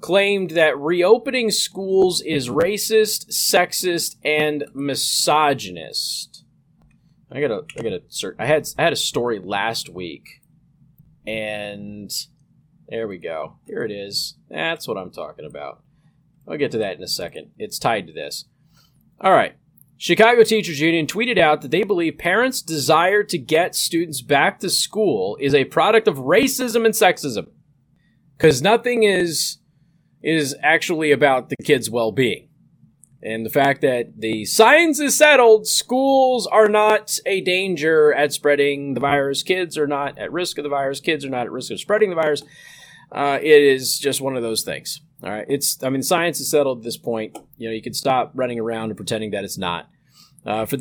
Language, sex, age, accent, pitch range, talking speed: English, male, 30-49, American, 135-185 Hz, 170 wpm